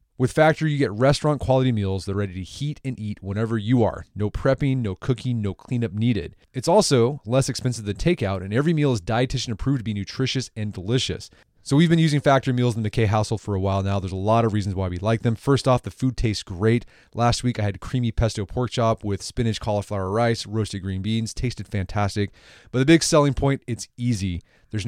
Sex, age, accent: male, 30-49, American